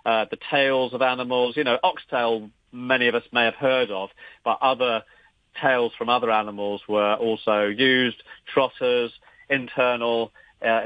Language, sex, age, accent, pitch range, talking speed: English, male, 40-59, British, 110-130 Hz, 150 wpm